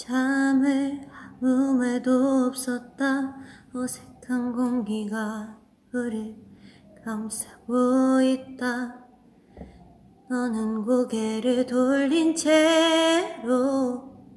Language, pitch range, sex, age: Korean, 255-345 Hz, female, 20-39